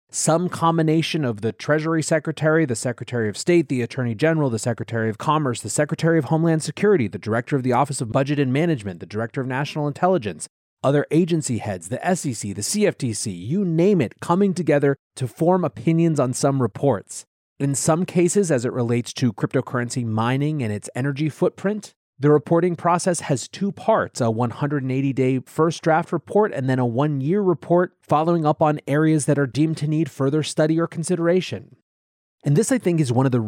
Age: 30-49